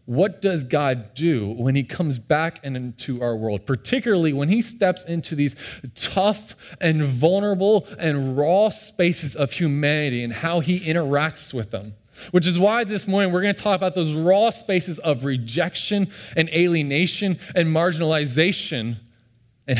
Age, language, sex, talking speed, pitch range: 20-39, English, male, 155 wpm, 115-160 Hz